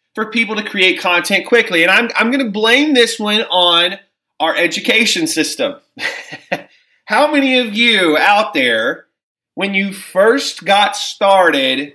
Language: English